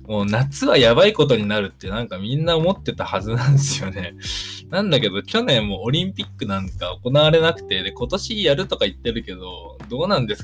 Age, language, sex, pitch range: 20-39, Japanese, male, 100-150 Hz